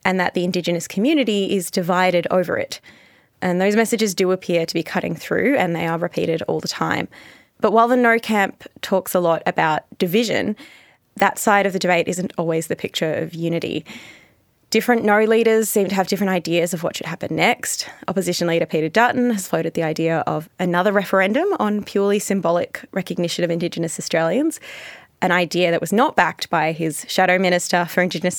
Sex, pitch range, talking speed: female, 170-210 Hz, 190 wpm